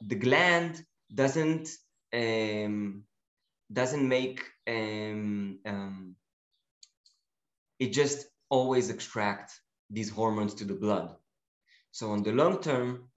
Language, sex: English, male